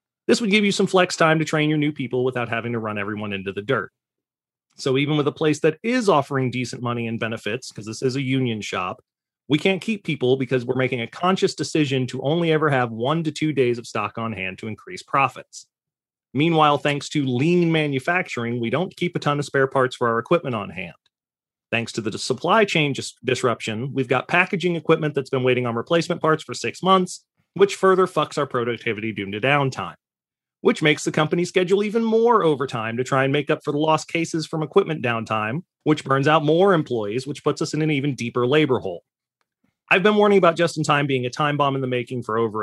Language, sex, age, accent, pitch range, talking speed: English, male, 30-49, American, 125-160 Hz, 220 wpm